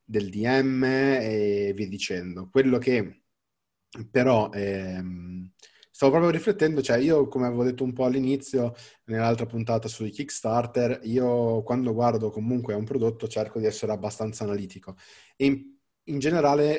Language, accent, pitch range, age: Italian, native, 105-130 Hz, 30-49